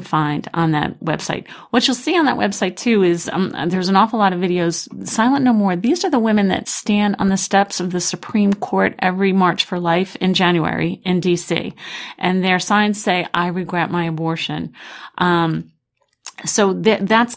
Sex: female